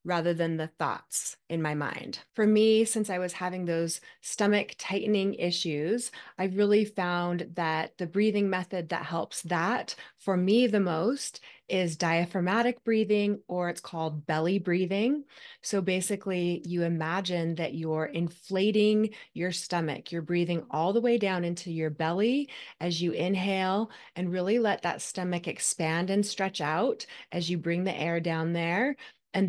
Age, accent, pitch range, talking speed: 20-39, American, 165-205 Hz, 155 wpm